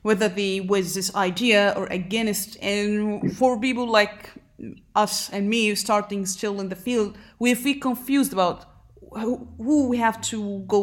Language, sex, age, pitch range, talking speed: English, female, 30-49, 185-225 Hz, 155 wpm